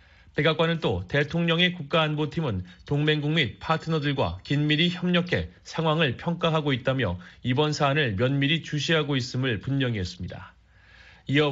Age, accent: 30-49, native